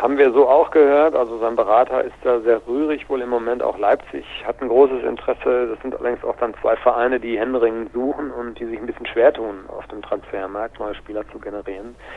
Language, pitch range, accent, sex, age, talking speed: German, 105-120 Hz, German, male, 50-69, 220 wpm